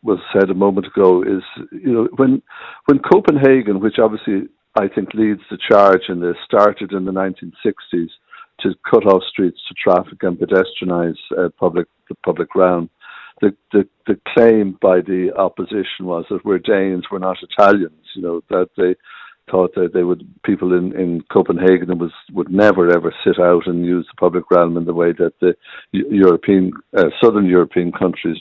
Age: 60-79